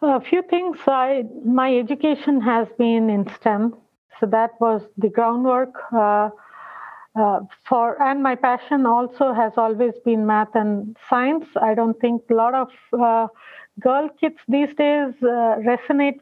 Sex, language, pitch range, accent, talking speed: female, English, 230-280 Hz, Indian, 150 wpm